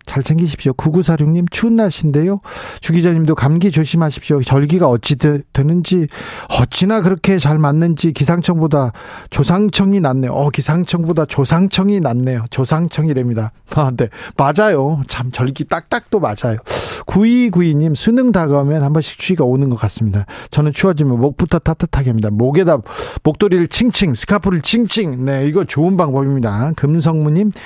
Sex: male